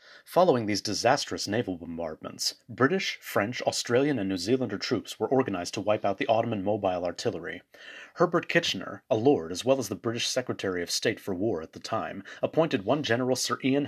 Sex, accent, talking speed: male, American, 185 wpm